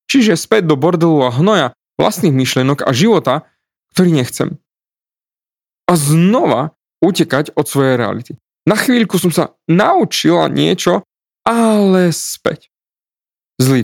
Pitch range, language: 120-160 Hz, Slovak